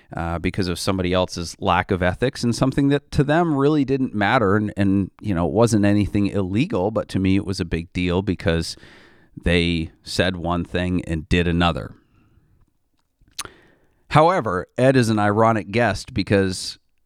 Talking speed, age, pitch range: 165 wpm, 30-49, 90-110 Hz